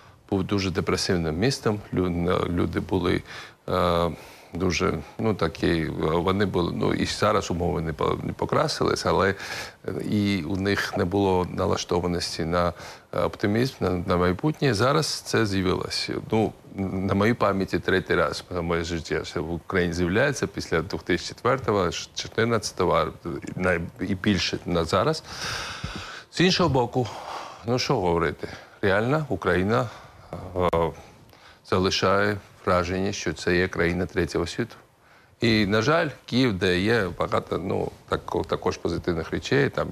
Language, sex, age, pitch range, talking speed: Ukrainian, male, 40-59, 85-105 Hz, 125 wpm